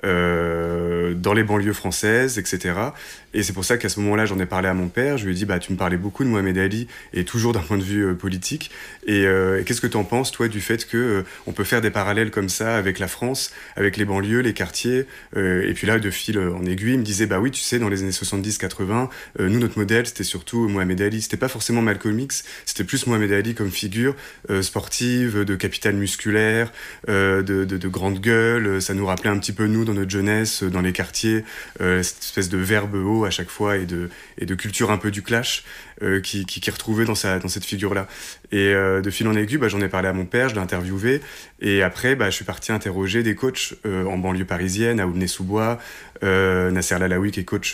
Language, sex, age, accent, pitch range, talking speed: French, male, 30-49, French, 95-110 Hz, 245 wpm